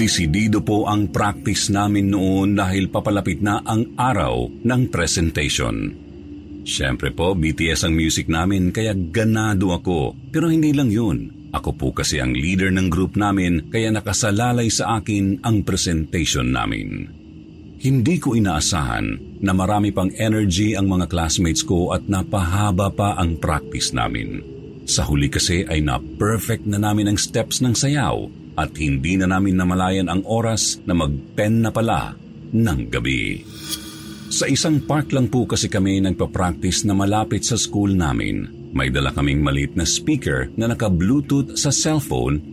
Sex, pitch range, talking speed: male, 80-110 Hz, 150 wpm